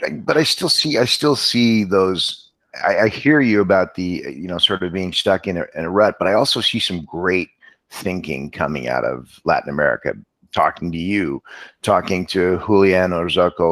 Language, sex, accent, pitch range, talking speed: English, male, American, 85-100 Hz, 195 wpm